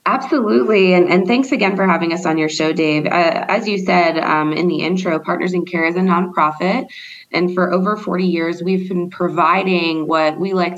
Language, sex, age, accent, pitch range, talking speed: English, female, 20-39, American, 155-180 Hz, 205 wpm